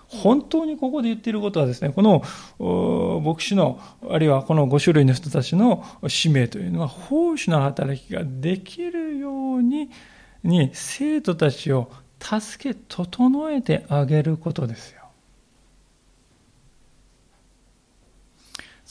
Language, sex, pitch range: Japanese, male, 155-230 Hz